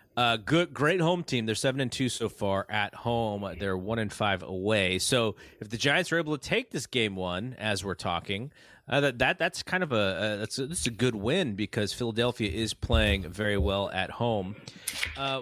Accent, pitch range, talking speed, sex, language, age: American, 105-145 Hz, 215 wpm, male, English, 30-49